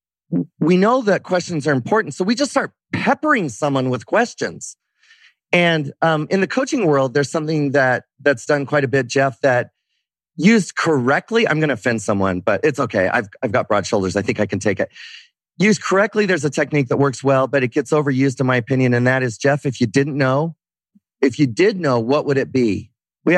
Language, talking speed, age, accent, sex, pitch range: English, 215 wpm, 30-49, American, male, 125-175 Hz